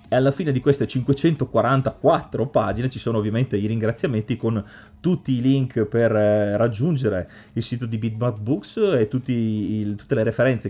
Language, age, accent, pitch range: Italian, 30-49, native, 110-135 Hz